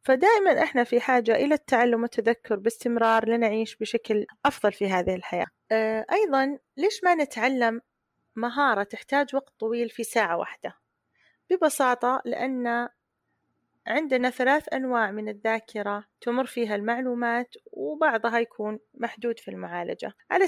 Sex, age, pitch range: female, 30-49, 220-260 Hz